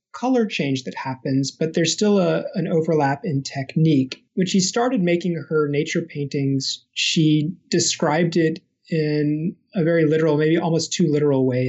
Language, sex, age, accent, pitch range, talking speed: English, male, 30-49, American, 140-170 Hz, 160 wpm